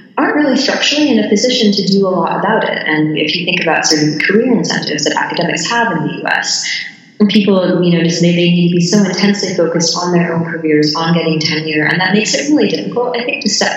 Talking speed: 235 wpm